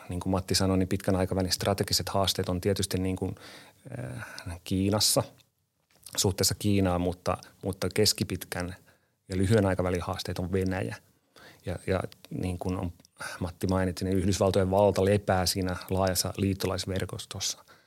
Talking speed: 130 wpm